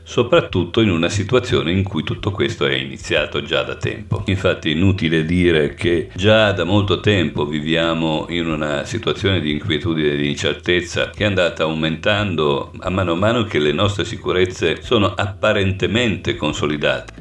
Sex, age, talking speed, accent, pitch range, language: male, 50-69, 155 wpm, native, 80-100 Hz, Italian